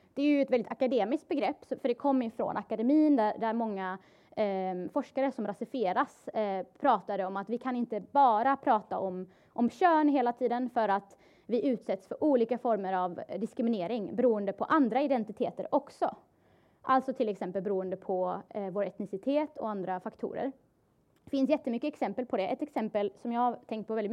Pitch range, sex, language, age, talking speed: 210-265 Hz, female, Swedish, 20-39, 180 wpm